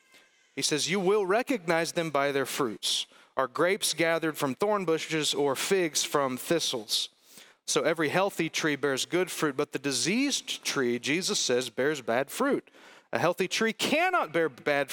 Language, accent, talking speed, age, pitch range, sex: English, American, 165 wpm, 40-59, 140-175 Hz, male